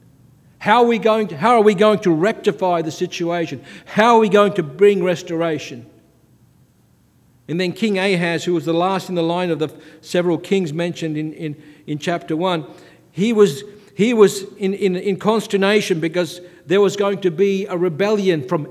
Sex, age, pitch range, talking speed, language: male, 50-69, 160-205 Hz, 185 wpm, English